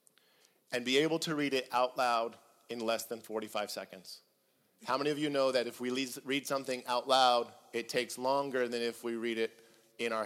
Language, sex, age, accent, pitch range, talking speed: English, male, 40-59, American, 120-150 Hz, 205 wpm